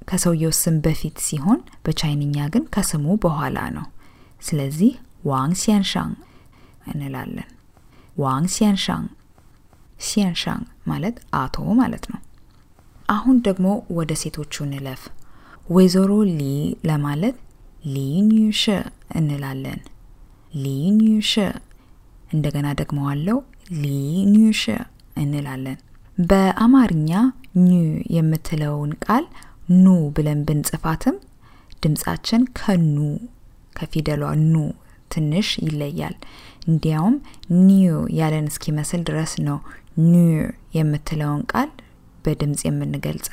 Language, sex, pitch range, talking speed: English, female, 145-195 Hz, 80 wpm